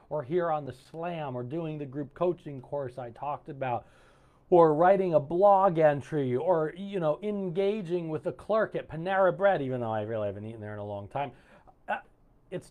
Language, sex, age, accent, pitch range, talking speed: English, male, 40-59, American, 125-175 Hz, 195 wpm